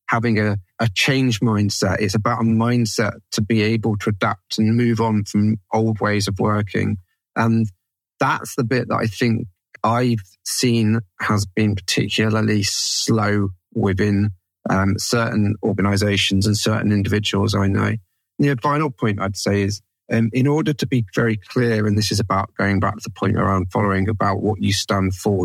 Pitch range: 100-115 Hz